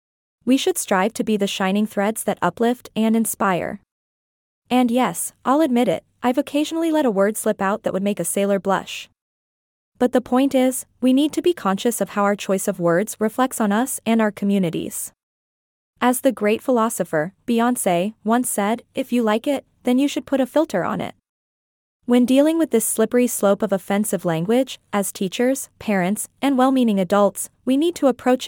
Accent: American